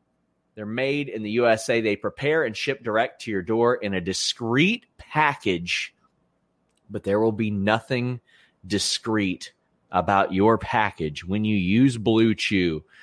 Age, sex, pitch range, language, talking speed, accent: 30-49, male, 105-150 Hz, English, 145 wpm, American